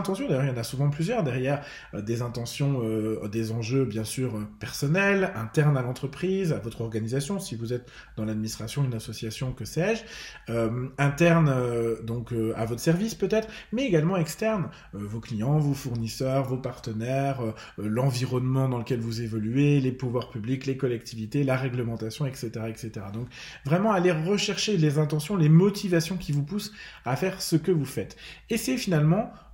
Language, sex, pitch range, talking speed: French, male, 120-165 Hz, 175 wpm